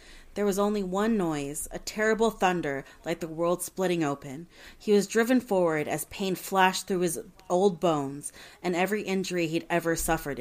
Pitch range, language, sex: 155-205 Hz, English, female